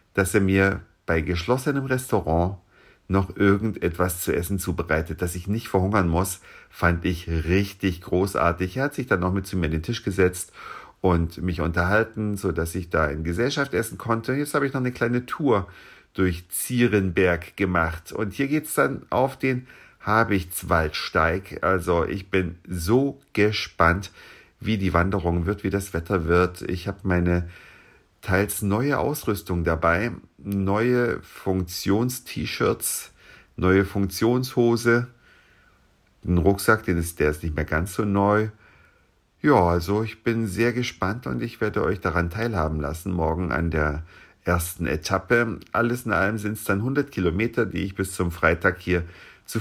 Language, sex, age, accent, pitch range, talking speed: German, male, 50-69, German, 85-110 Hz, 155 wpm